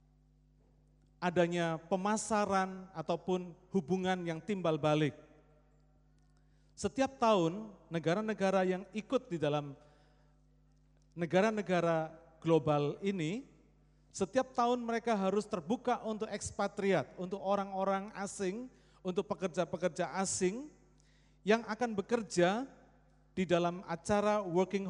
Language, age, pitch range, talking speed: Turkish, 40-59, 150-195 Hz, 90 wpm